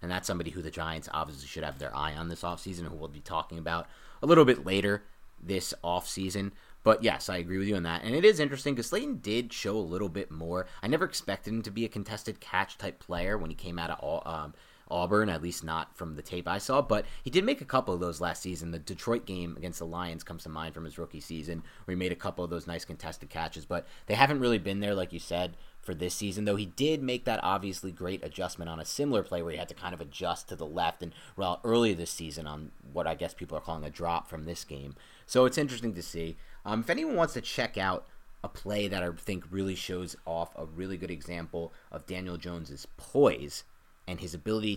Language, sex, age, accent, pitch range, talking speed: English, male, 30-49, American, 80-105 Hz, 250 wpm